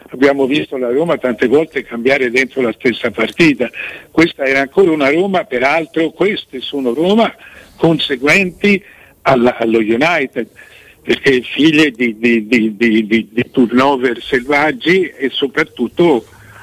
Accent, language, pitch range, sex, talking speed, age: native, Italian, 120-165 Hz, male, 130 wpm, 60-79